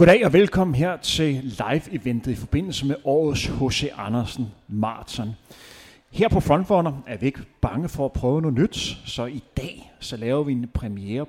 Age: 30-49